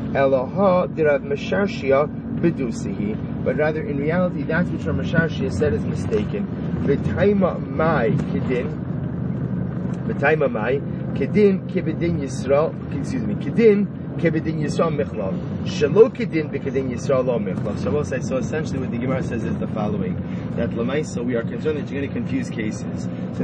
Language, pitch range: English, 145-180 Hz